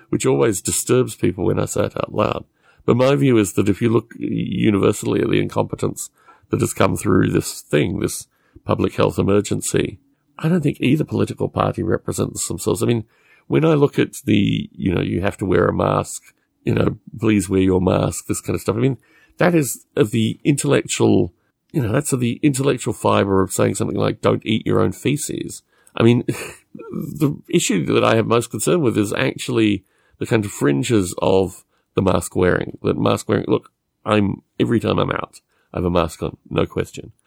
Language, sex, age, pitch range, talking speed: English, male, 50-69, 95-130 Hz, 200 wpm